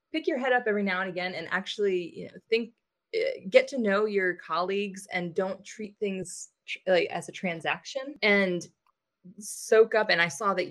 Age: 20-39